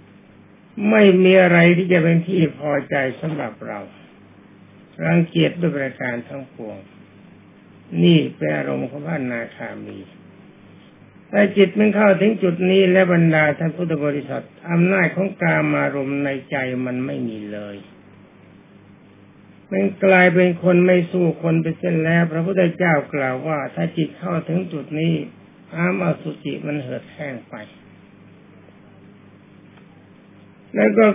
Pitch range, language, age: 145-180 Hz, Thai, 60-79